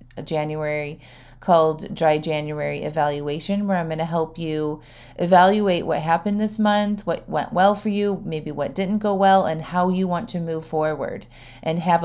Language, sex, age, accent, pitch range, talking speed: English, female, 30-49, American, 155-185 Hz, 175 wpm